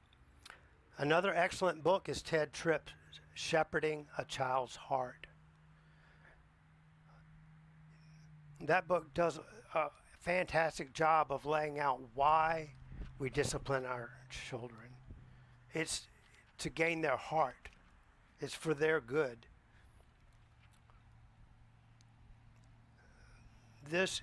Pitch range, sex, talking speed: 120-155 Hz, male, 85 wpm